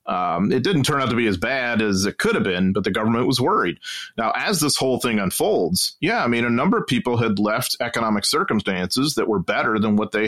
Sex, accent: male, American